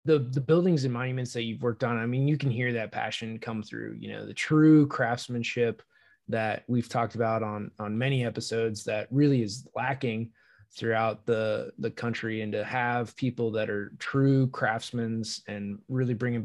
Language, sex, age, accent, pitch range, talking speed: English, male, 20-39, American, 110-130 Hz, 180 wpm